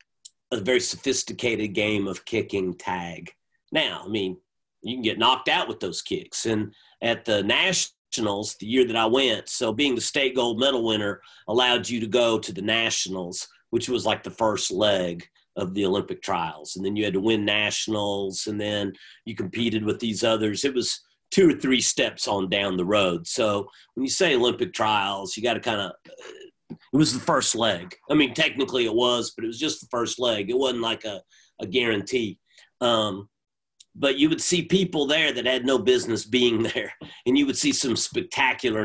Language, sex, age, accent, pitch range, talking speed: English, male, 40-59, American, 105-130 Hz, 200 wpm